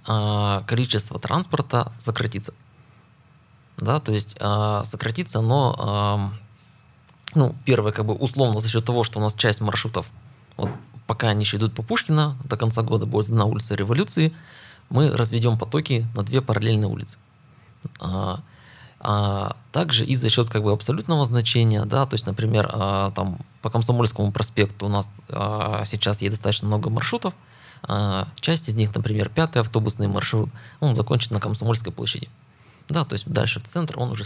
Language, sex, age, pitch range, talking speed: Russian, male, 20-39, 105-130 Hz, 160 wpm